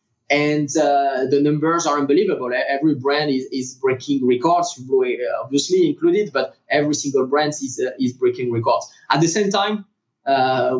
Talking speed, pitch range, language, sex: 155 wpm, 125-170 Hz, English, male